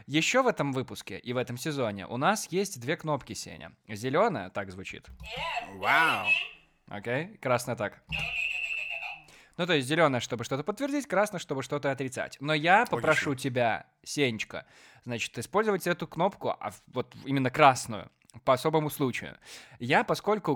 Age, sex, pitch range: 20-39, male, 130-175 Hz